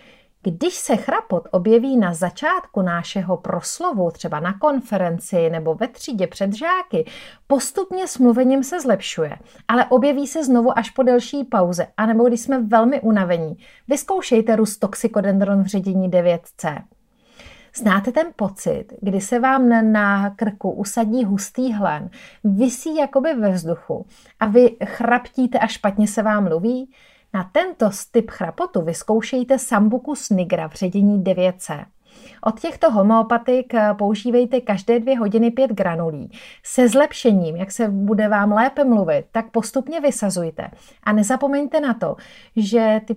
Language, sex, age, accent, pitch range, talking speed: Czech, female, 30-49, native, 195-255 Hz, 140 wpm